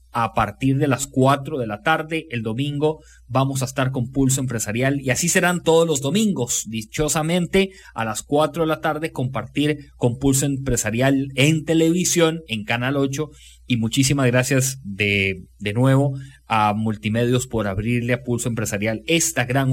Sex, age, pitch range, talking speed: male, 30-49, 115-155 Hz, 160 wpm